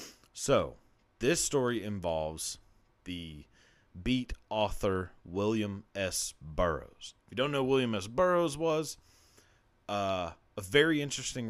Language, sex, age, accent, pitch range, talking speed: English, male, 30-49, American, 95-125 Hz, 120 wpm